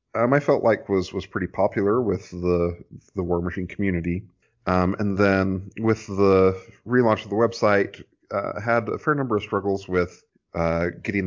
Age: 30-49